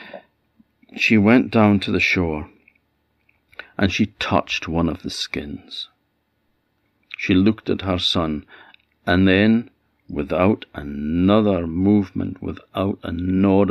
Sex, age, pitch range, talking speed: male, 60-79, 85-100 Hz, 115 wpm